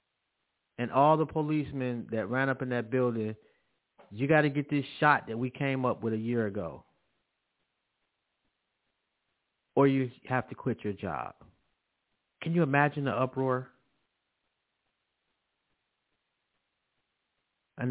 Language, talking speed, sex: English, 125 wpm, male